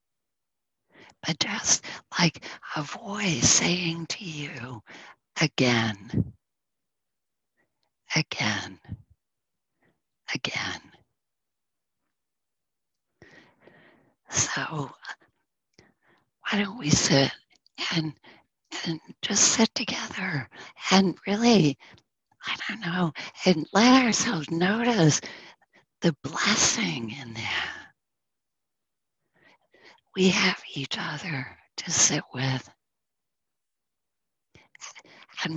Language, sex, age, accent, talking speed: English, female, 40-59, American, 70 wpm